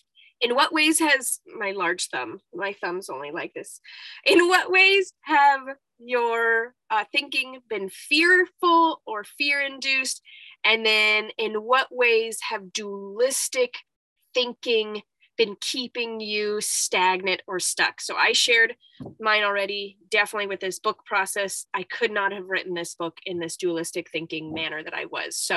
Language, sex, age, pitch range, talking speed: English, female, 20-39, 190-310 Hz, 150 wpm